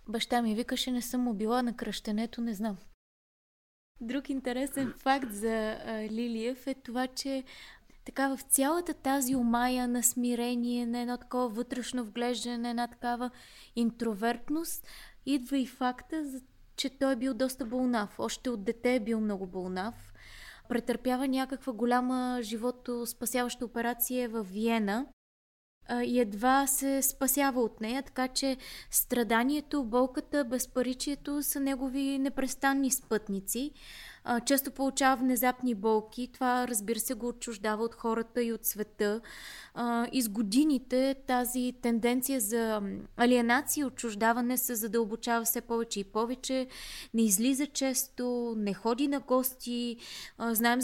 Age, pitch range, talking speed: 20-39, 230-260 Hz, 130 wpm